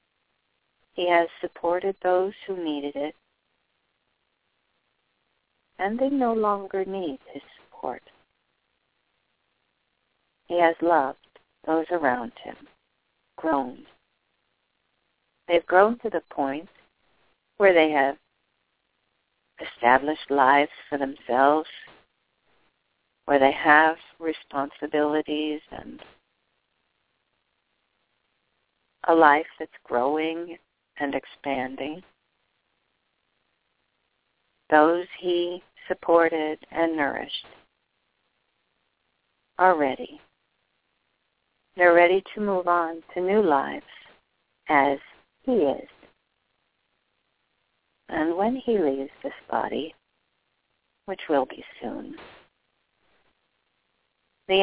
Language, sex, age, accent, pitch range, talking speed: English, female, 50-69, American, 145-180 Hz, 80 wpm